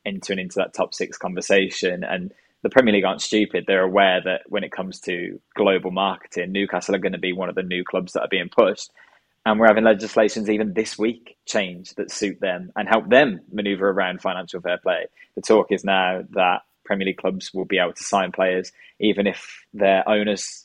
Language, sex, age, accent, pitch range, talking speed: English, male, 20-39, British, 95-120 Hz, 210 wpm